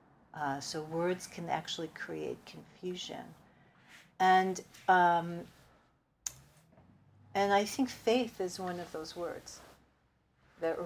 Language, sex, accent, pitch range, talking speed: English, female, American, 170-205 Hz, 105 wpm